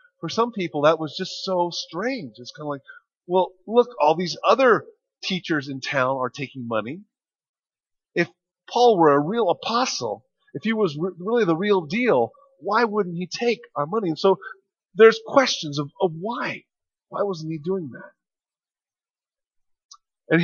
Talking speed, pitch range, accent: 160 wpm, 145-225 Hz, American